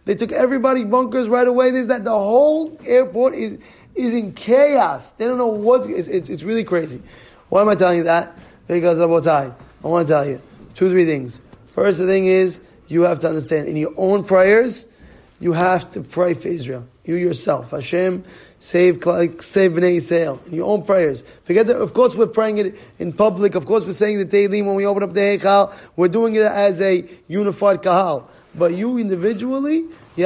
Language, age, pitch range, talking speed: English, 20-39, 175-215 Hz, 200 wpm